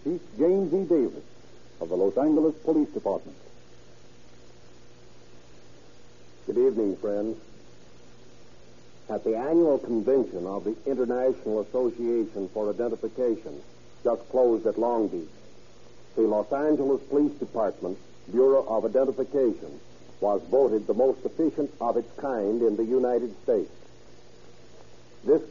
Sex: male